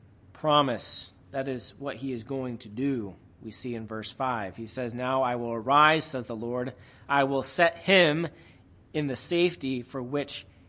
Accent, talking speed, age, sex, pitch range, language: American, 180 wpm, 30-49, male, 100-135 Hz, English